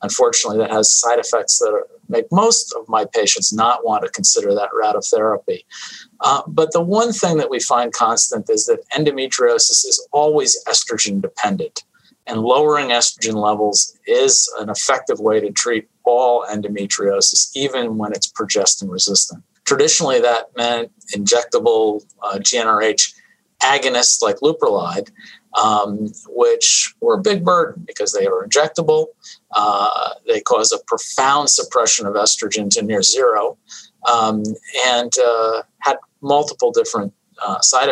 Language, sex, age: English, male, 50-69